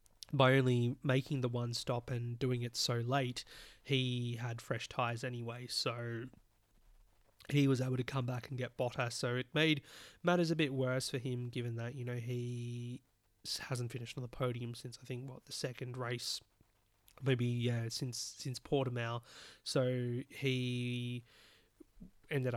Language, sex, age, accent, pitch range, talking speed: English, male, 20-39, Australian, 120-135 Hz, 160 wpm